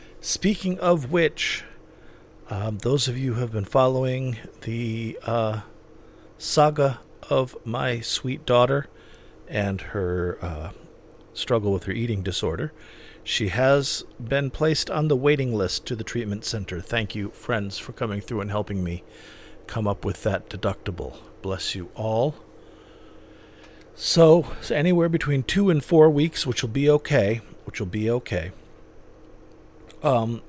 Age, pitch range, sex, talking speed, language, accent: 50-69, 105-140 Hz, male, 140 wpm, English, American